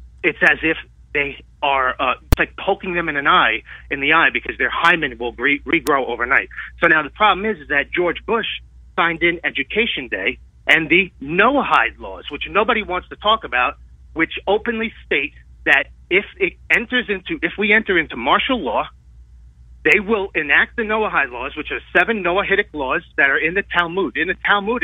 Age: 30-49